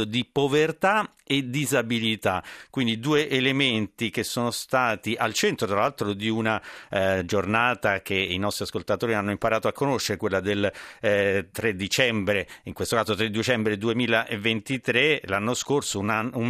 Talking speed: 150 wpm